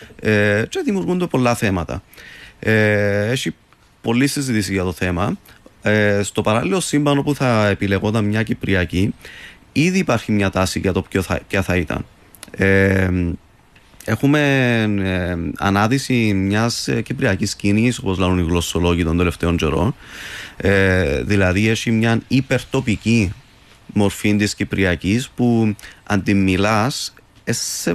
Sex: male